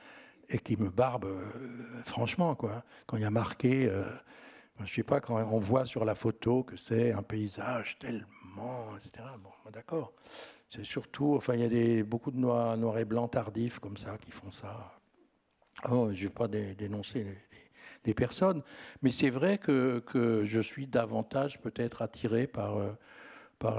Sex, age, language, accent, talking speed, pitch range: male, 60-79, French, French, 180 wpm, 110-130 Hz